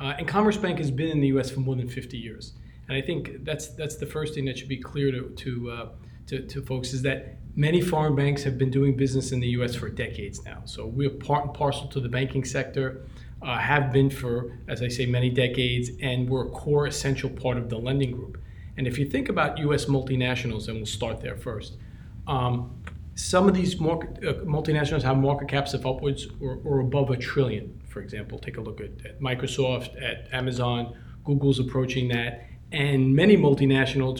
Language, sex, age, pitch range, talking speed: English, male, 40-59, 120-140 Hz, 210 wpm